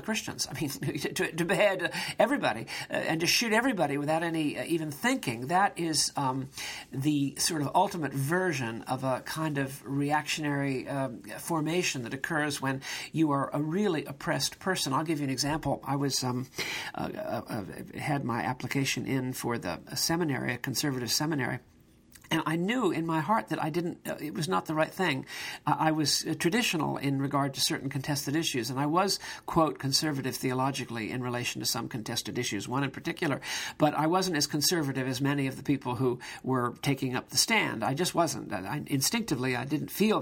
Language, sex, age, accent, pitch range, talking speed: English, male, 50-69, American, 130-165 Hz, 190 wpm